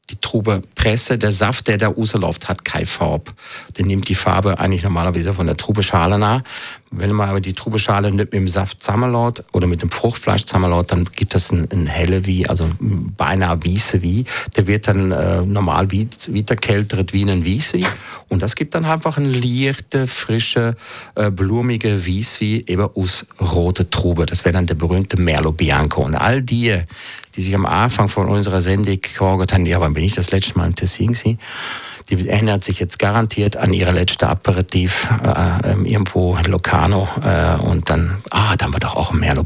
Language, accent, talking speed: German, German, 190 wpm